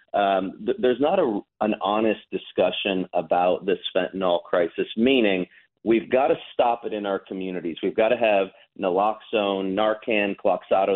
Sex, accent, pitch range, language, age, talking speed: male, American, 95-125 Hz, English, 30-49, 155 wpm